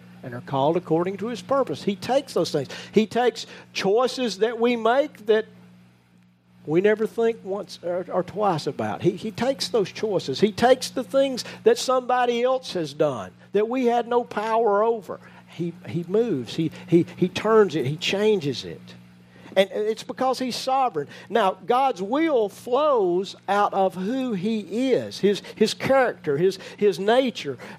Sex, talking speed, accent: male, 165 wpm, American